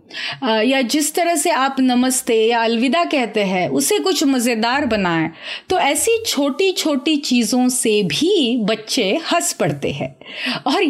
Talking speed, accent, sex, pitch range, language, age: 145 wpm, native, female, 225-320 Hz, Hindi, 30-49